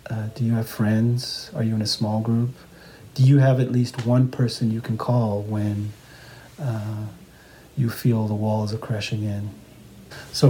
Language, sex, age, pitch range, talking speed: English, male, 40-59, 110-130 Hz, 175 wpm